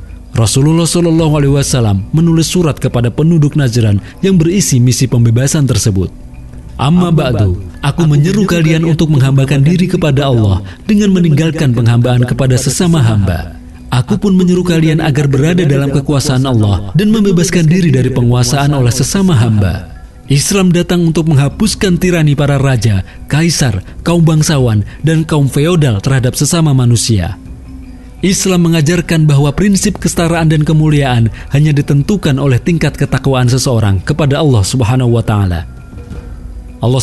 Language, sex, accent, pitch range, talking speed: Indonesian, male, native, 115-165 Hz, 130 wpm